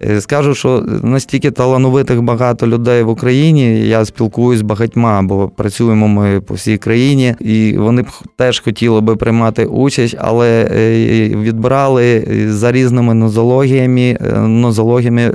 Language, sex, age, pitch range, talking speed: Ukrainian, male, 20-39, 105-125 Hz, 125 wpm